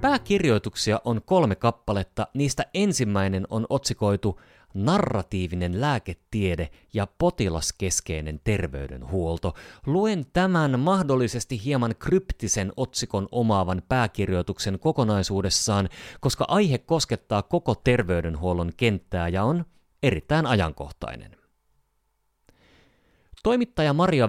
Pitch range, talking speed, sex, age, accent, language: 90-130 Hz, 85 wpm, male, 30-49, native, Finnish